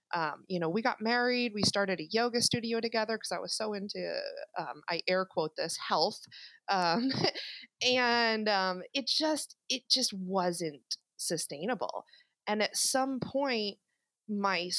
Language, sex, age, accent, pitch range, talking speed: English, female, 30-49, American, 175-230 Hz, 150 wpm